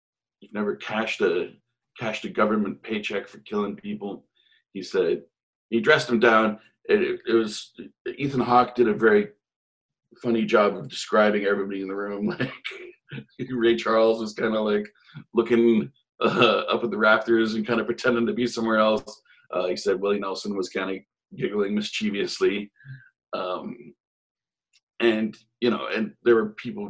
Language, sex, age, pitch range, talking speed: English, male, 40-59, 110-165 Hz, 160 wpm